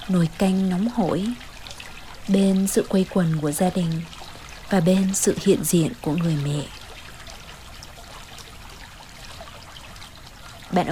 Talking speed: 110 wpm